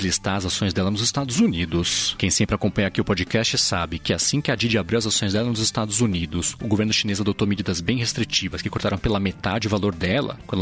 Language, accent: Portuguese, Brazilian